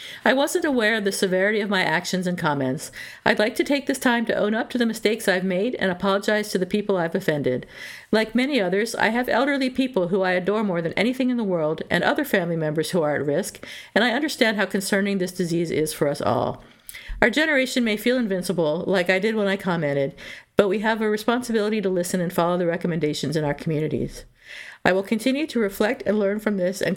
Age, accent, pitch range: 50-69, American, 175-225 Hz